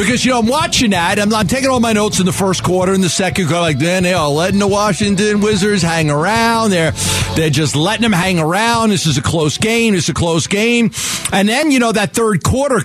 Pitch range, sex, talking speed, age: 170-235 Hz, male, 250 wpm, 50-69